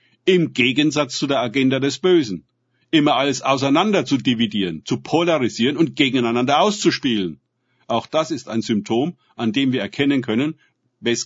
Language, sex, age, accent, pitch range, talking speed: German, male, 50-69, German, 120-145 Hz, 150 wpm